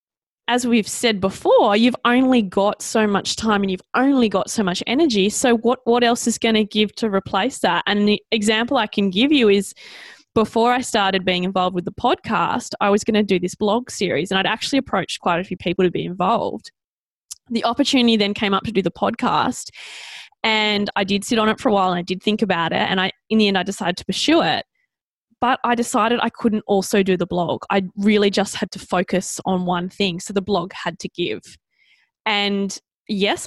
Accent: Australian